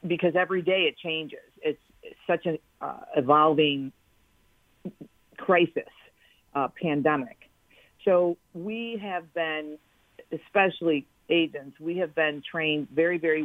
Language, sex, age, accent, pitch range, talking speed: English, female, 50-69, American, 150-175 Hz, 115 wpm